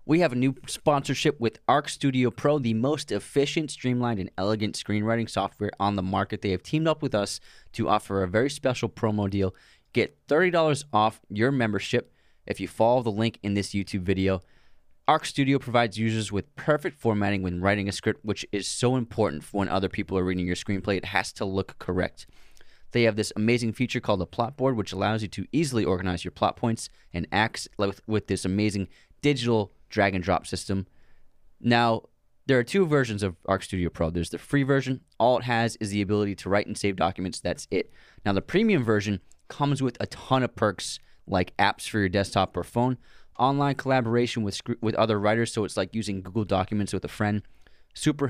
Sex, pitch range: male, 100-125 Hz